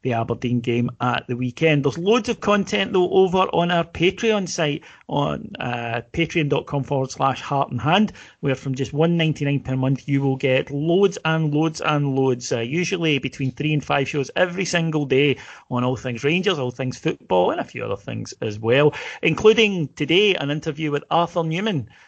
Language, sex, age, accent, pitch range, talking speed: English, male, 40-59, British, 125-155 Hz, 195 wpm